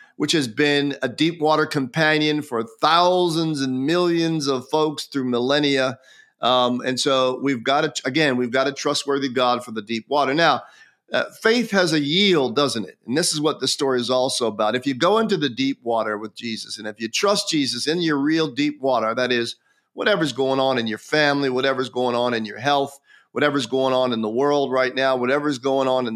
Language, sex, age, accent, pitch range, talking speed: English, male, 40-59, American, 125-155 Hz, 215 wpm